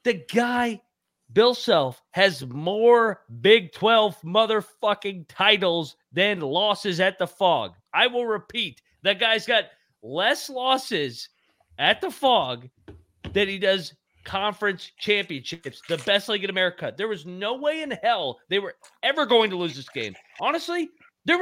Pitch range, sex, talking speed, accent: 165-230 Hz, male, 145 wpm, American